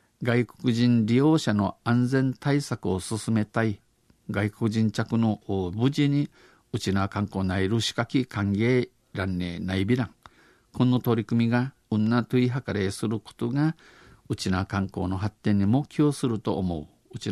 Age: 50-69